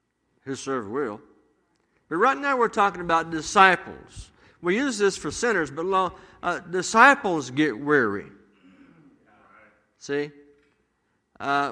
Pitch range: 140-195 Hz